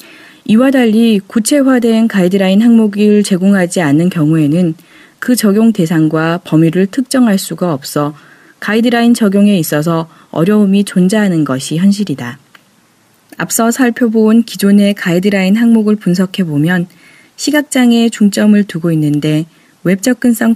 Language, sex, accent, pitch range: Korean, female, native, 165-225 Hz